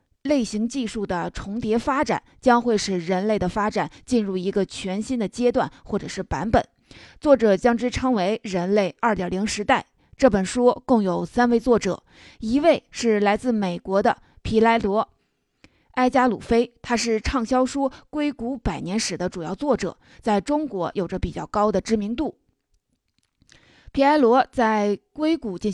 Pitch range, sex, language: 190-245 Hz, female, Chinese